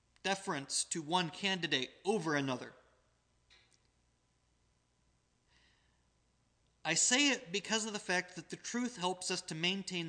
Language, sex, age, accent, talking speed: English, male, 30-49, American, 120 wpm